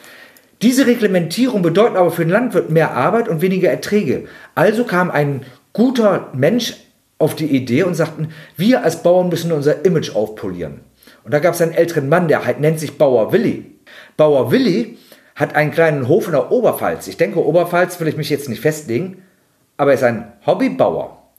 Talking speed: 180 wpm